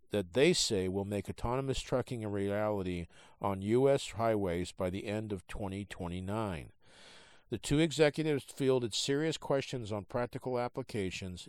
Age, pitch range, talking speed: 50-69, 95-125 Hz, 135 wpm